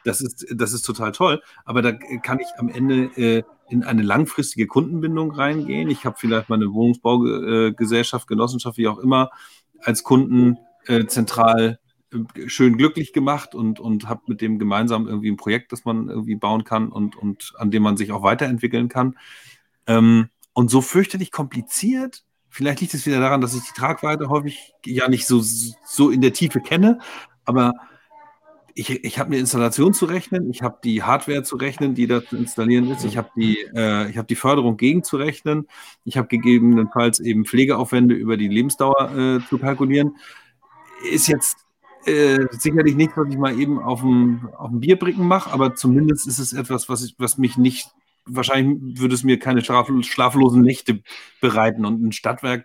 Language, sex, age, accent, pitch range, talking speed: German, male, 40-59, German, 115-135 Hz, 180 wpm